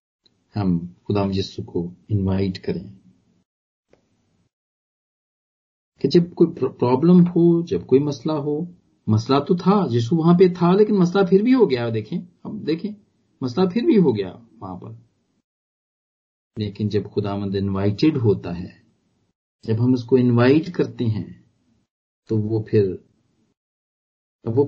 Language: Punjabi